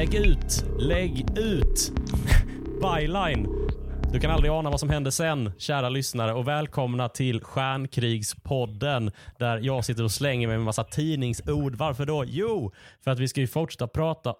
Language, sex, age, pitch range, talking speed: Swedish, male, 30-49, 110-135 Hz, 160 wpm